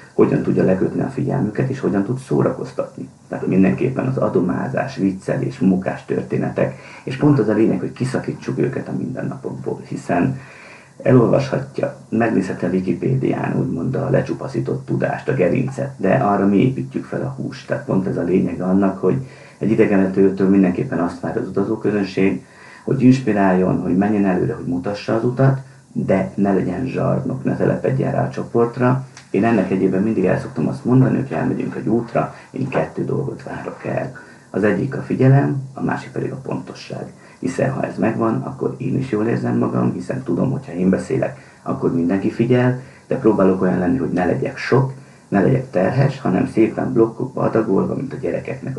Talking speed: 170 wpm